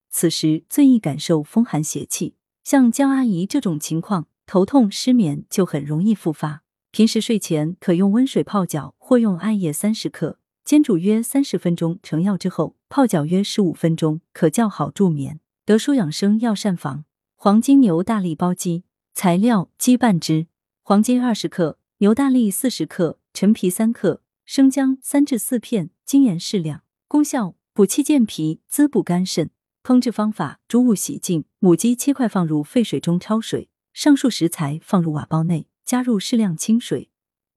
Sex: female